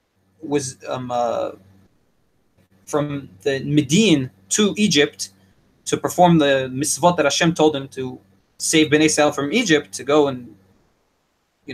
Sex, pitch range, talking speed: male, 140-190 Hz, 135 wpm